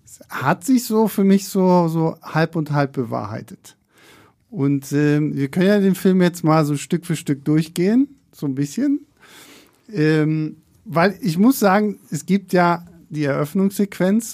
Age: 50-69